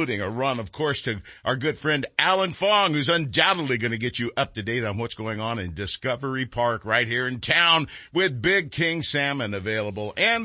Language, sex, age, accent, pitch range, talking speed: English, male, 50-69, American, 135-195 Hz, 210 wpm